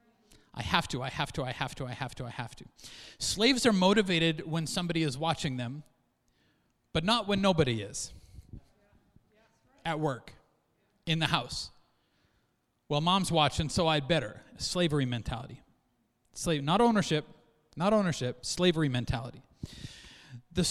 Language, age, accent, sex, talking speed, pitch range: English, 30-49, American, male, 140 wpm, 155-235 Hz